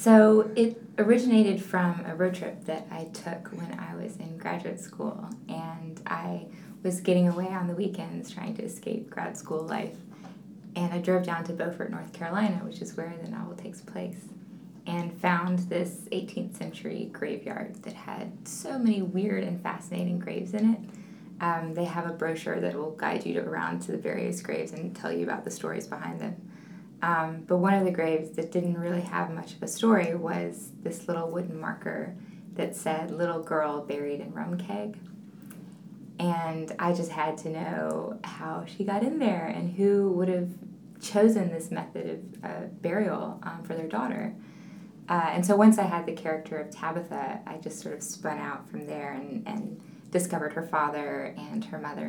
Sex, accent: female, American